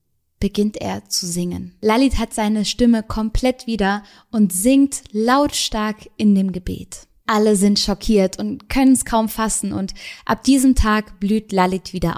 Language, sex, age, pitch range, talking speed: German, female, 20-39, 200-245 Hz, 155 wpm